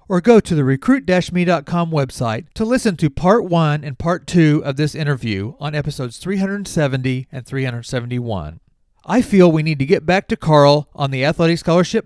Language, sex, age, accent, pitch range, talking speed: English, male, 40-59, American, 145-195 Hz, 175 wpm